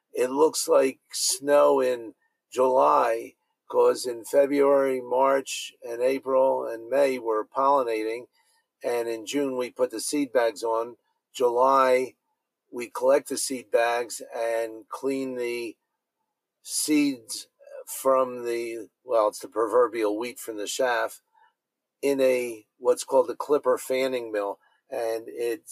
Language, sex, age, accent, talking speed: English, male, 50-69, American, 130 wpm